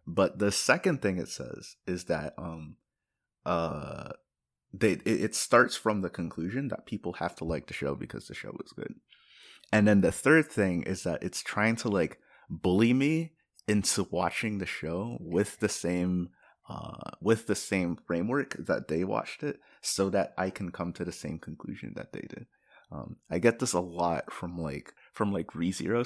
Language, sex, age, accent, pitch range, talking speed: English, male, 30-49, American, 85-105 Hz, 185 wpm